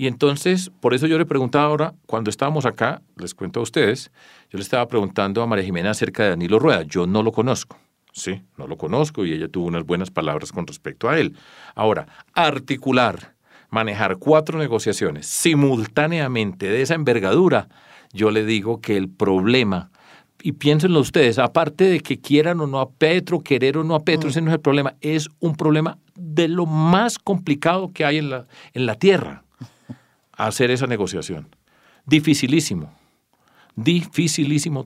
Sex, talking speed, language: male, 170 wpm, English